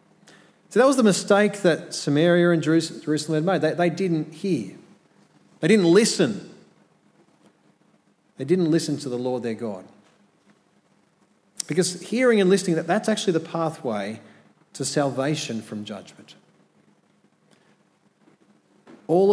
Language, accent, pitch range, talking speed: English, Australian, 130-185 Hz, 120 wpm